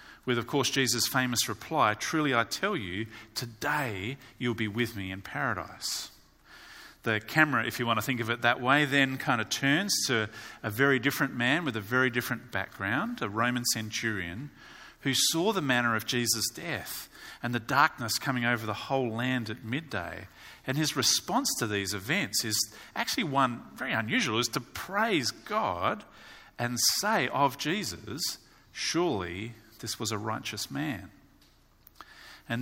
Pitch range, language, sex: 110-135 Hz, English, male